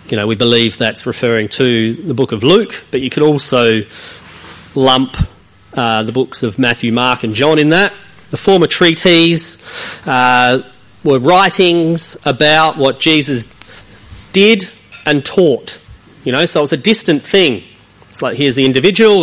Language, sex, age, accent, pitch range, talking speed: English, male, 40-59, Australian, 125-165 Hz, 160 wpm